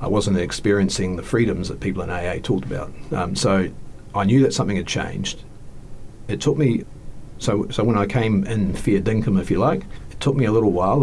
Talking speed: 210 wpm